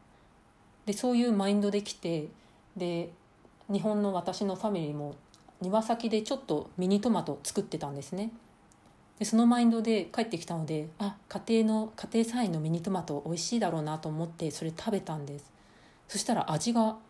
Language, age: Japanese, 40-59